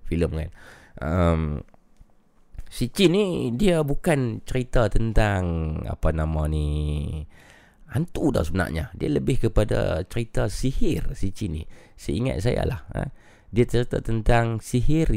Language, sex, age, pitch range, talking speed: Malay, male, 30-49, 80-110 Hz, 130 wpm